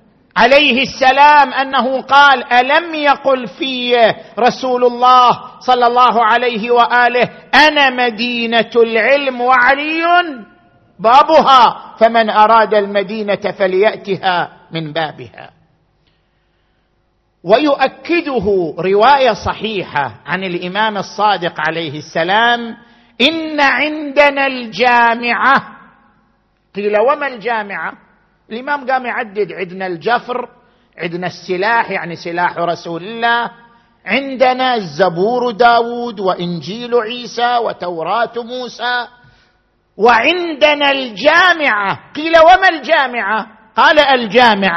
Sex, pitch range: male, 205-265 Hz